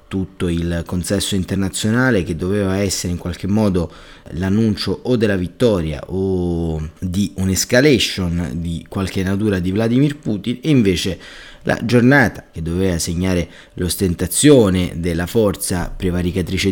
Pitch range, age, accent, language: 90-115 Hz, 30-49, native, Italian